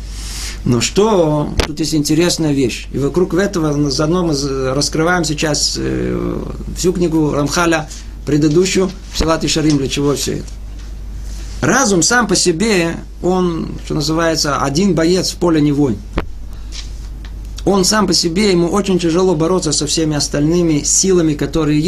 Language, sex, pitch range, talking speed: Russian, male, 150-195 Hz, 135 wpm